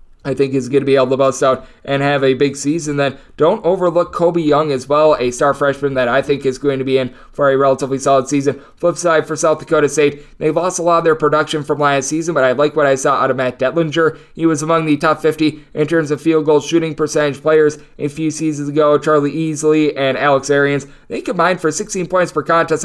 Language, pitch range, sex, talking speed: English, 140-155 Hz, male, 245 wpm